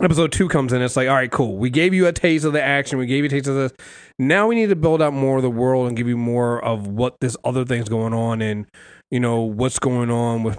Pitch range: 115-160 Hz